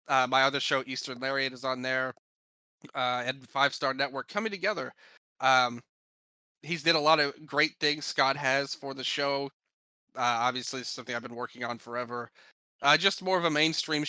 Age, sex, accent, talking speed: 20-39, male, American, 185 wpm